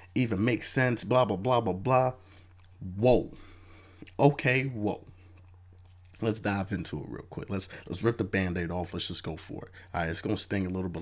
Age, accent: 30-49, American